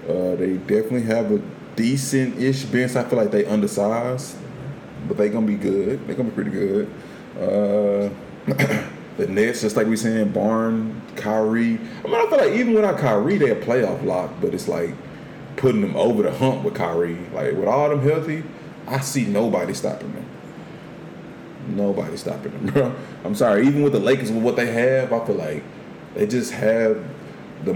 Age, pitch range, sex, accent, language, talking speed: 20-39, 100-135 Hz, male, American, English, 185 wpm